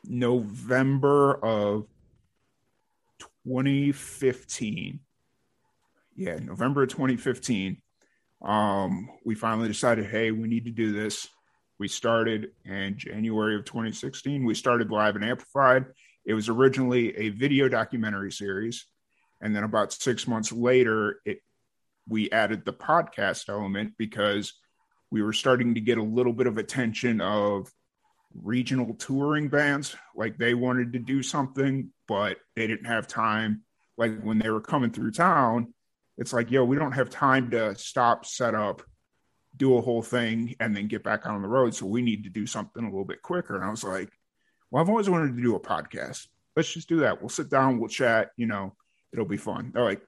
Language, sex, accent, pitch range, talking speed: English, male, American, 110-130 Hz, 170 wpm